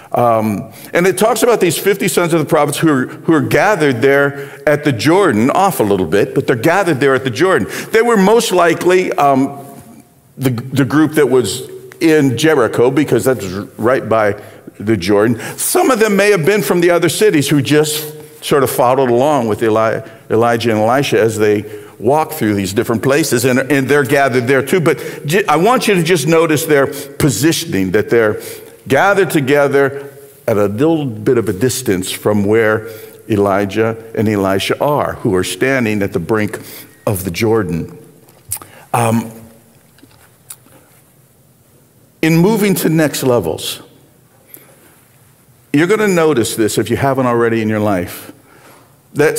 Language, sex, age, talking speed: English, male, 50-69, 165 wpm